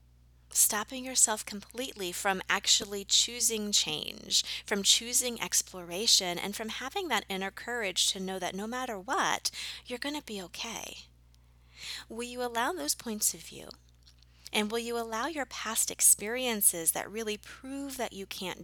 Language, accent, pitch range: English, American, 155-225 Hz